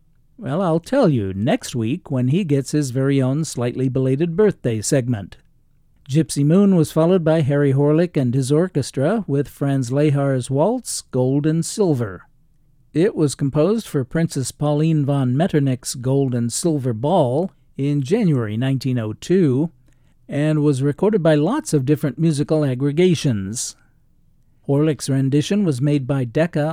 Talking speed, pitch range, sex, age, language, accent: 140 wpm, 130-160 Hz, male, 50-69, English, American